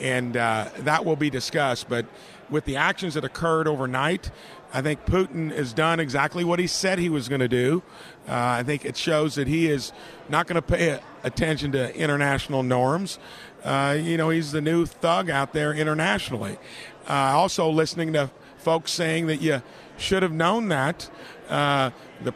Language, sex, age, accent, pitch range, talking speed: English, male, 50-69, American, 140-170 Hz, 175 wpm